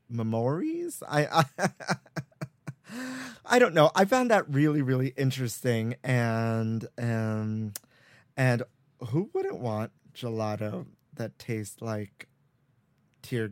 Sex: male